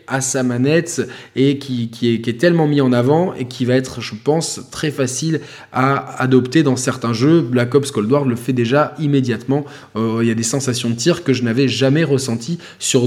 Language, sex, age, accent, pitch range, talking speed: French, male, 20-39, French, 125-150 Hz, 220 wpm